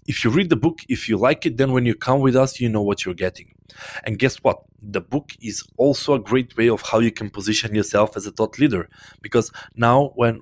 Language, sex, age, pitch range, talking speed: English, male, 20-39, 105-130 Hz, 250 wpm